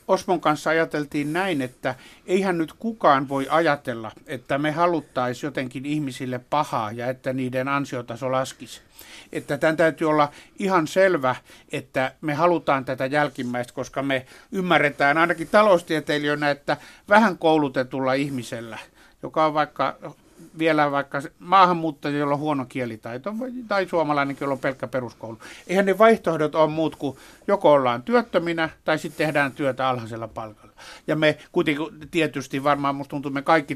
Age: 60-79